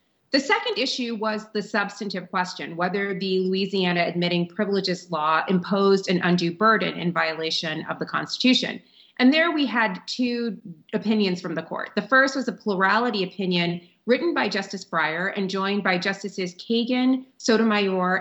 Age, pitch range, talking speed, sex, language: 30-49, 180-225 Hz, 155 wpm, female, English